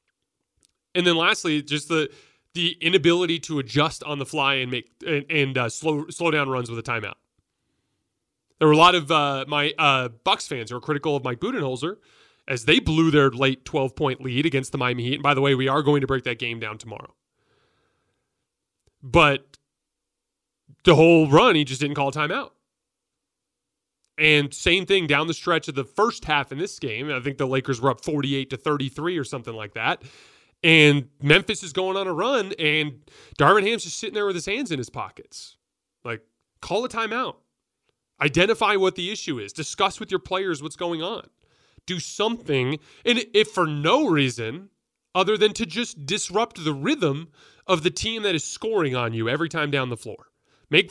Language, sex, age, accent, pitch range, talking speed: English, male, 30-49, American, 135-180 Hz, 190 wpm